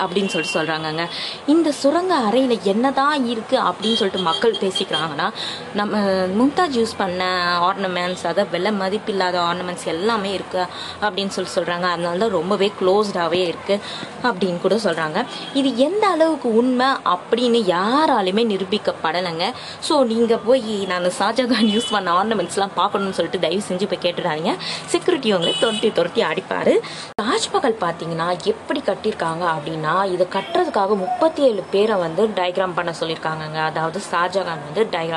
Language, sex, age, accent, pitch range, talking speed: Tamil, female, 20-39, native, 180-240 Hz, 115 wpm